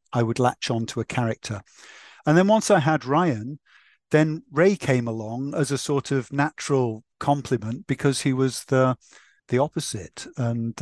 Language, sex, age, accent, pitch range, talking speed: English, male, 50-69, British, 115-140 Hz, 165 wpm